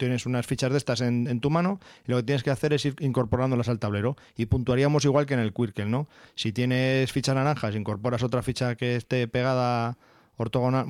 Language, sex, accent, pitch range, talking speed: Spanish, male, Spanish, 115-140 Hz, 220 wpm